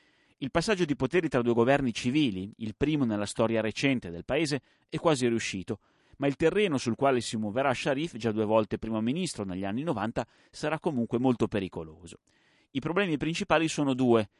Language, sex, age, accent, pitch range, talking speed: Italian, male, 30-49, native, 110-150 Hz, 180 wpm